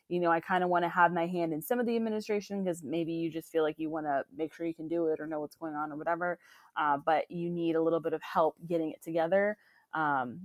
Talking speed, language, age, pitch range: 285 wpm, English, 20-39, 165-215 Hz